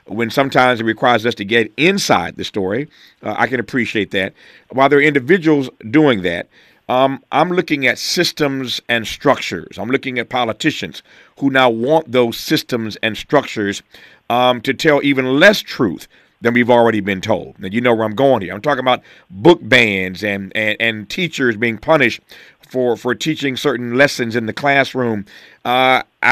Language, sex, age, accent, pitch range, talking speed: English, male, 50-69, American, 115-140 Hz, 175 wpm